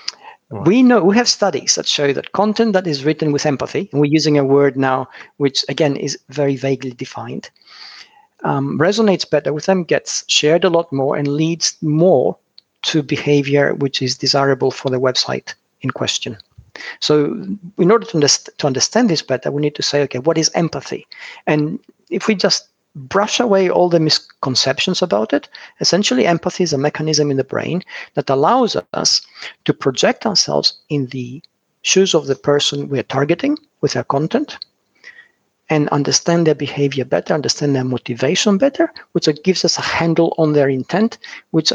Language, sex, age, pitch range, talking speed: English, male, 50-69, 140-185 Hz, 170 wpm